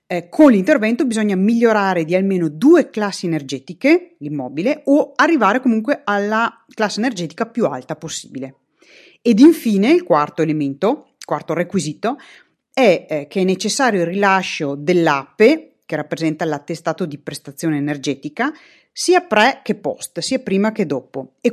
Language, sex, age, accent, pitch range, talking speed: Italian, female, 40-59, native, 160-265 Hz, 140 wpm